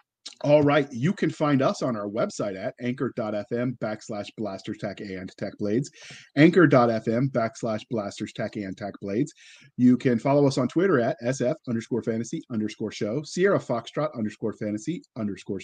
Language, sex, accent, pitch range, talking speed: English, male, American, 115-145 Hz, 155 wpm